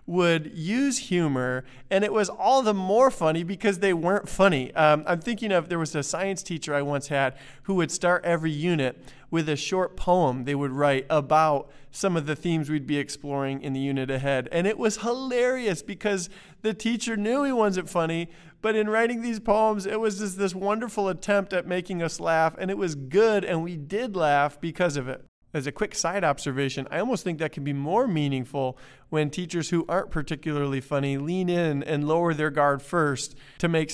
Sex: male